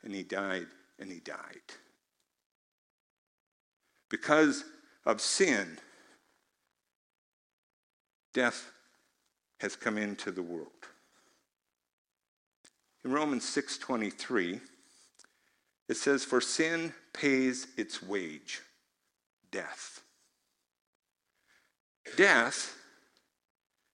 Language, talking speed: English, 70 wpm